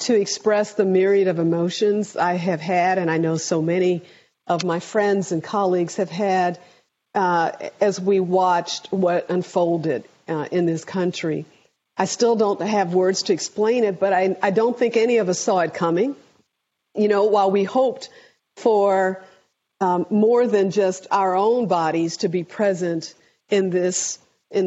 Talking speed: 170 wpm